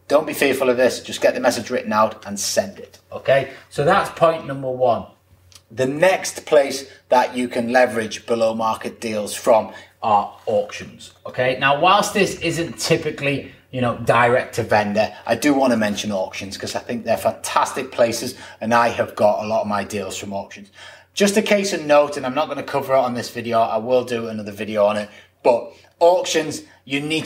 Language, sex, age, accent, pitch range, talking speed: English, male, 30-49, British, 110-145 Hz, 205 wpm